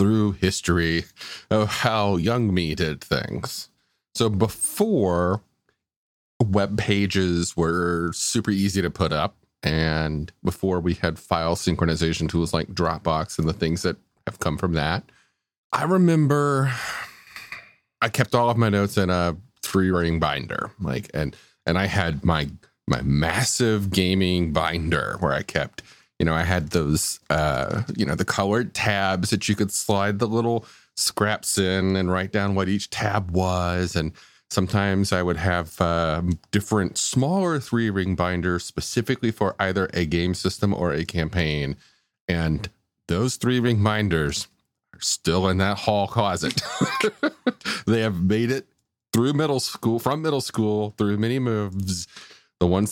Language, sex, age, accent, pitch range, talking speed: English, male, 30-49, American, 85-110 Hz, 150 wpm